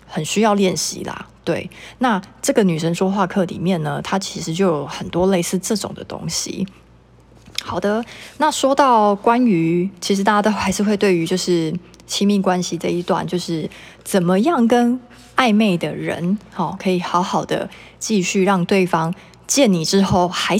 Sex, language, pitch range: female, Chinese, 170-205 Hz